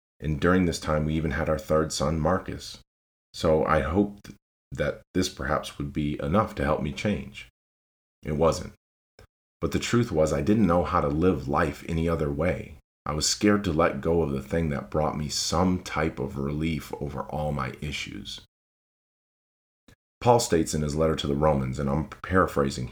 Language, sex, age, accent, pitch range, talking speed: English, male, 30-49, American, 70-85 Hz, 185 wpm